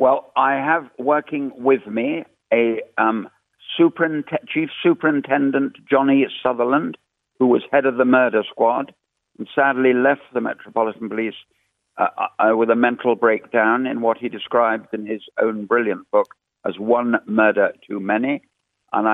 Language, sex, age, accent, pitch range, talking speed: English, male, 60-79, British, 115-145 Hz, 145 wpm